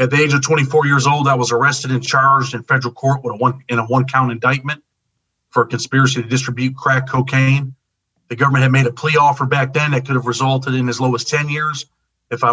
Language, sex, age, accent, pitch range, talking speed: English, male, 40-59, American, 125-140 Hz, 240 wpm